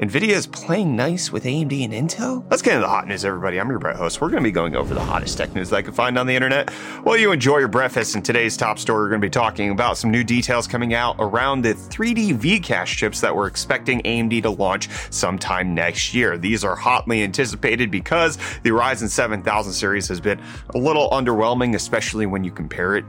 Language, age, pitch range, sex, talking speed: English, 30-49, 95-135 Hz, male, 225 wpm